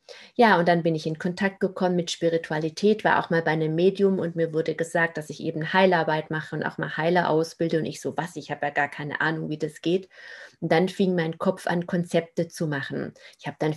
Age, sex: 30-49, female